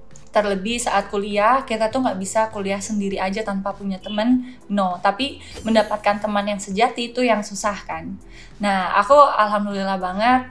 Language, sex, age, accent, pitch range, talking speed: Indonesian, female, 20-39, native, 190-225 Hz, 155 wpm